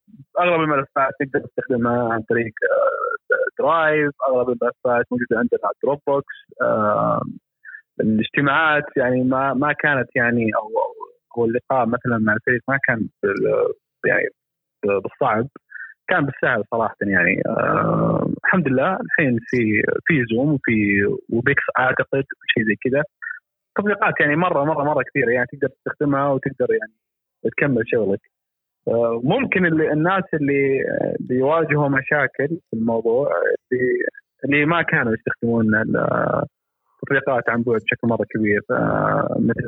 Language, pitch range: Arabic, 120-160 Hz